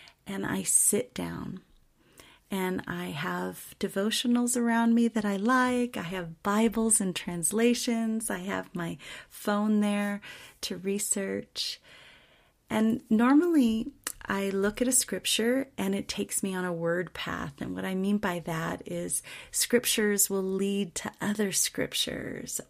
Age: 30-49